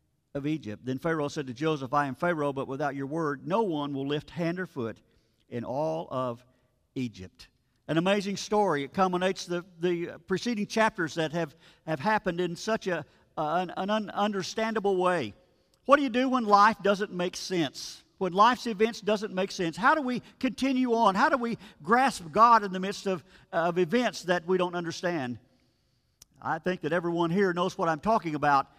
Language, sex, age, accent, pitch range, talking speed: English, male, 50-69, American, 155-210 Hz, 195 wpm